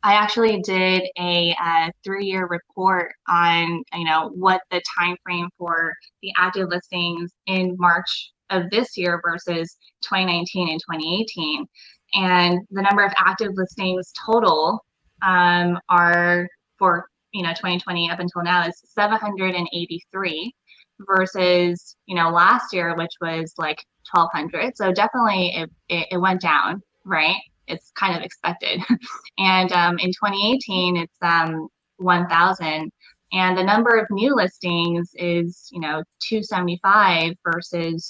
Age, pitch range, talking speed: 20-39, 170-195 Hz, 140 wpm